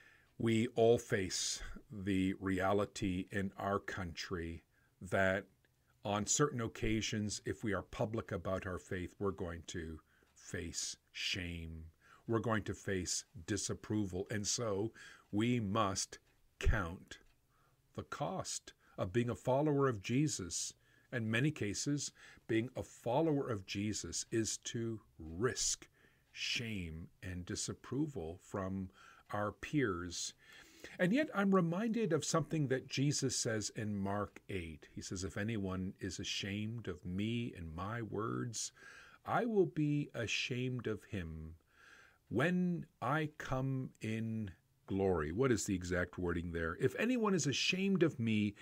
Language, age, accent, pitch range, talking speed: English, 50-69, American, 95-130 Hz, 130 wpm